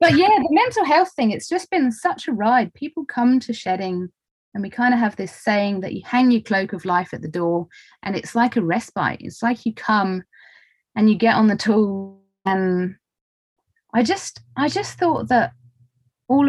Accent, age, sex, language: British, 30-49, female, English